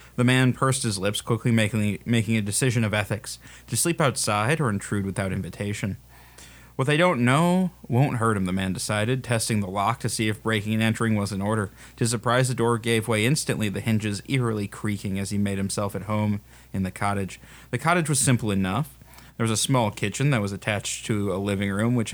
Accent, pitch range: American, 100-120 Hz